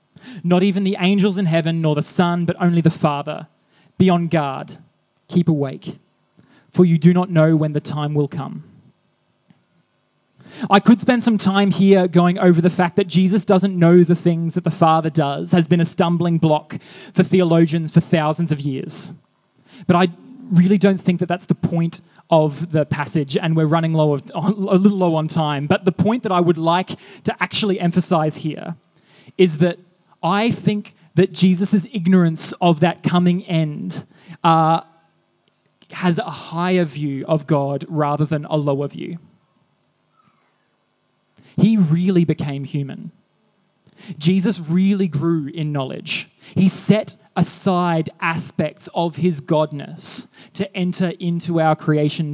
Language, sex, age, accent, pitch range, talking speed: English, male, 20-39, Australian, 160-185 Hz, 160 wpm